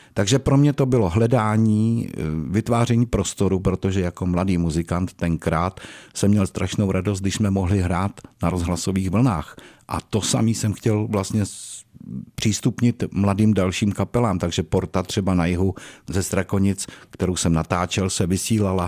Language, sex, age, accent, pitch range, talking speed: Czech, male, 50-69, native, 90-110 Hz, 145 wpm